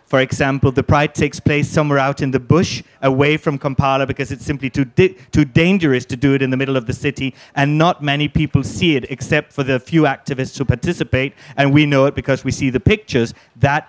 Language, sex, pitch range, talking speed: Danish, male, 135-155 Hz, 225 wpm